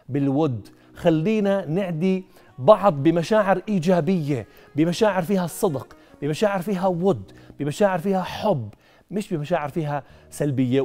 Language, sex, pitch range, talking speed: Arabic, male, 145-200 Hz, 105 wpm